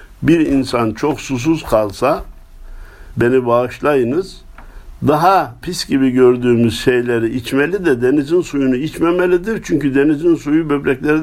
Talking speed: 110 wpm